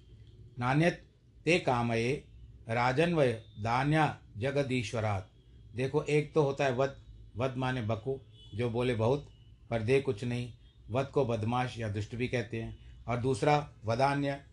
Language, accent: Hindi, native